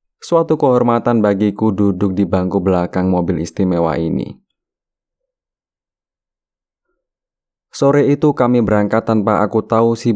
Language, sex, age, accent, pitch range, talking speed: Indonesian, male, 20-39, native, 95-115 Hz, 105 wpm